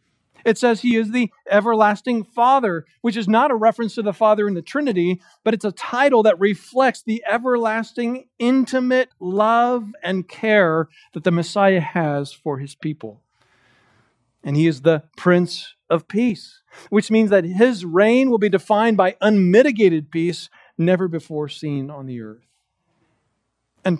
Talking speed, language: 155 wpm, English